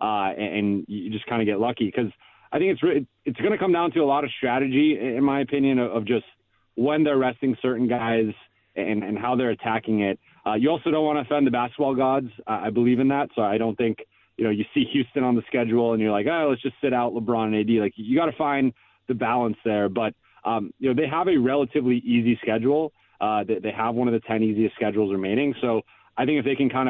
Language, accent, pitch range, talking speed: English, American, 115-145 Hz, 250 wpm